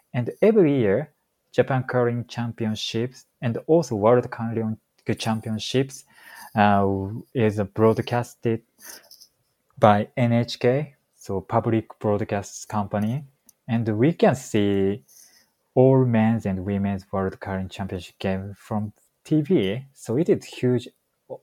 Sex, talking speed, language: male, 105 wpm, English